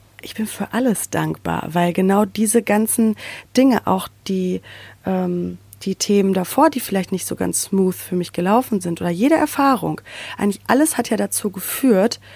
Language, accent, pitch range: German, German, 150-220 Hz